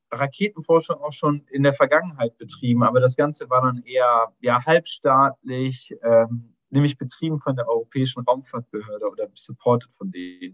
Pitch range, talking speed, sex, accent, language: 120-140 Hz, 150 wpm, male, German, German